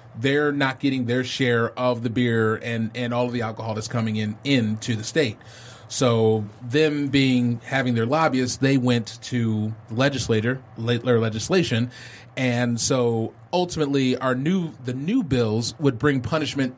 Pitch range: 115-150 Hz